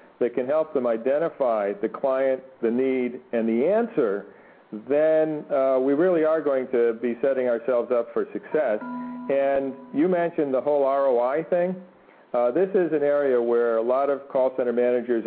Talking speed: 175 wpm